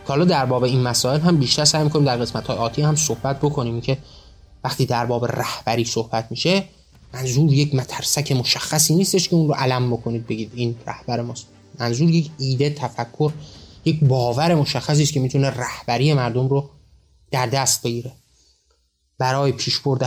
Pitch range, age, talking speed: 115-150 Hz, 30-49, 160 wpm